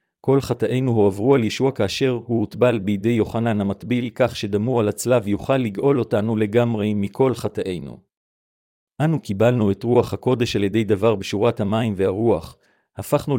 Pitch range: 100-125 Hz